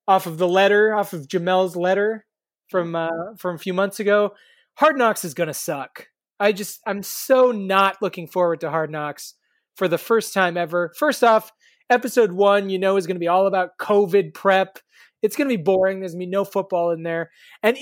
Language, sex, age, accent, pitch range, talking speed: English, male, 20-39, American, 180-220 Hz, 200 wpm